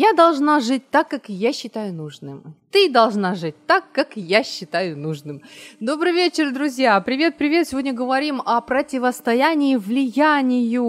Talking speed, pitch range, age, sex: 140 wpm, 190-255 Hz, 30-49, female